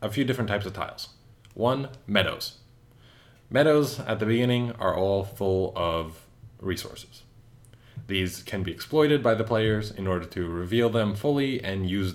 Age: 20-39